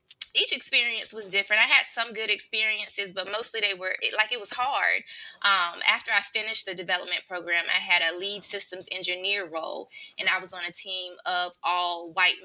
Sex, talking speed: female, 195 wpm